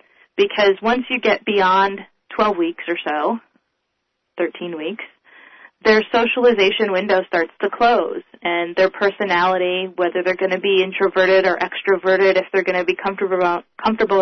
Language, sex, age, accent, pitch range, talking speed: English, female, 30-49, American, 175-210 Hz, 150 wpm